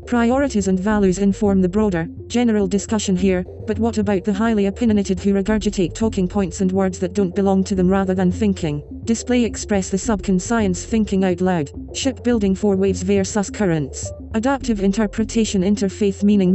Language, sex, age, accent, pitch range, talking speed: English, female, 30-49, British, 190-215 Hz, 165 wpm